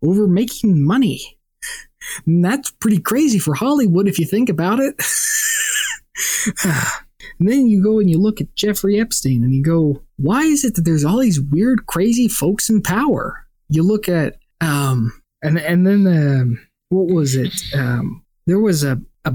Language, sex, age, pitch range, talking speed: English, male, 20-39, 145-200 Hz, 170 wpm